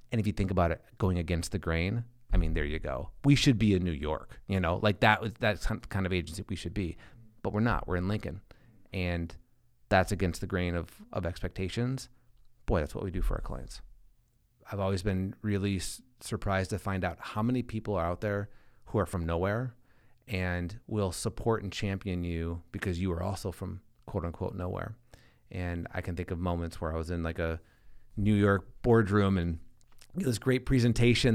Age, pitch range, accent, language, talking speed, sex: 30-49, 90-120 Hz, American, English, 205 wpm, male